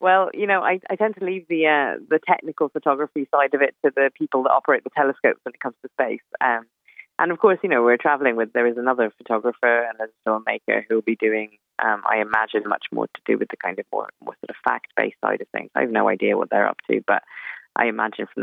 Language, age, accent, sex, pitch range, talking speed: English, 20-39, British, female, 115-145 Hz, 255 wpm